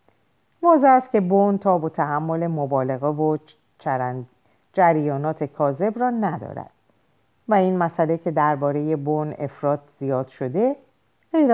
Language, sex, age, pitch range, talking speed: Persian, female, 50-69, 135-195 Hz, 120 wpm